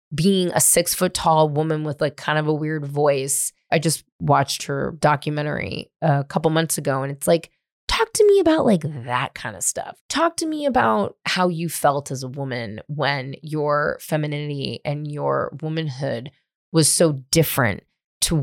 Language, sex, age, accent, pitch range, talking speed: English, female, 20-39, American, 150-230 Hz, 175 wpm